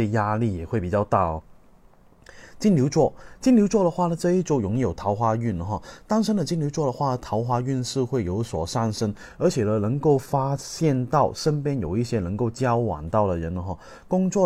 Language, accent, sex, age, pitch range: Chinese, native, male, 20-39, 105-140 Hz